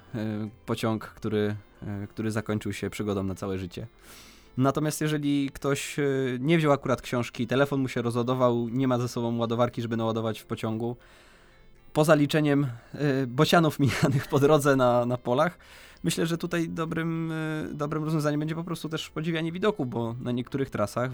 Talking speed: 155 wpm